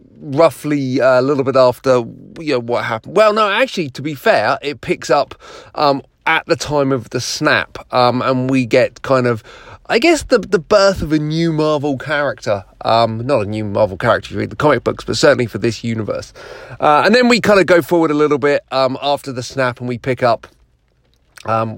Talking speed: 220 wpm